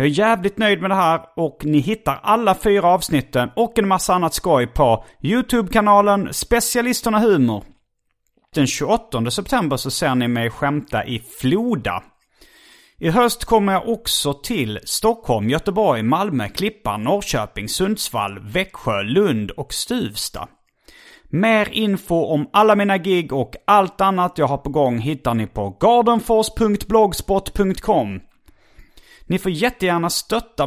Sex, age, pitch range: male, 30-49, 135-210 Hz